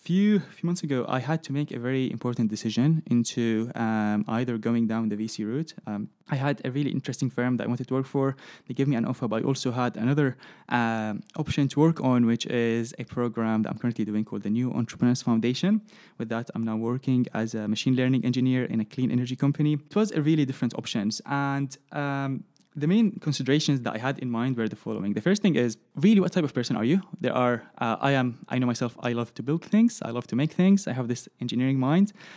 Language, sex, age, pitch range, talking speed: English, male, 20-39, 120-150 Hz, 240 wpm